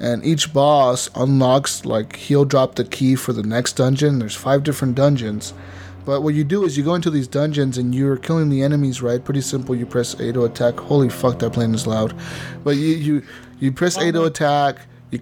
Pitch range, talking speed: 115-140 Hz, 215 wpm